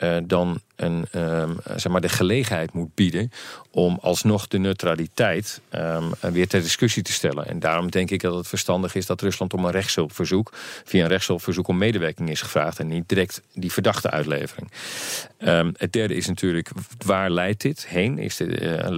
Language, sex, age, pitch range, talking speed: Dutch, male, 40-59, 85-100 Hz, 180 wpm